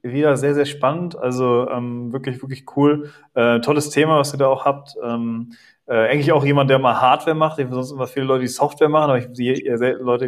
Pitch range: 115-135 Hz